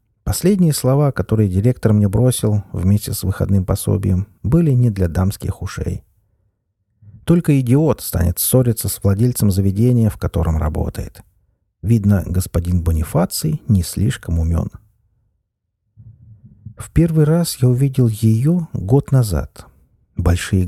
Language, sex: Russian, male